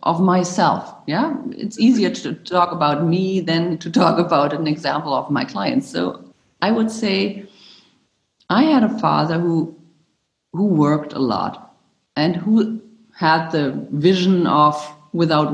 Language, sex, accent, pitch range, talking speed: English, female, German, 145-205 Hz, 145 wpm